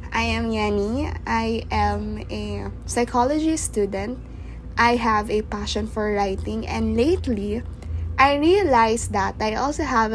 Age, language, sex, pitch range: 20-39, English, female, 200-270 Hz